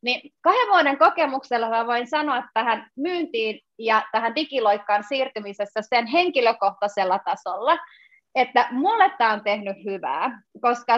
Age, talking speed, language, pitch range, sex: 30-49, 120 wpm, Finnish, 220-275 Hz, female